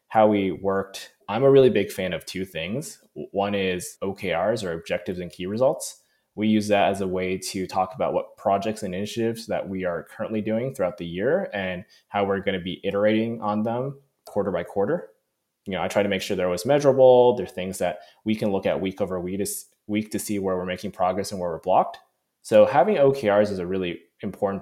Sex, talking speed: male, 215 wpm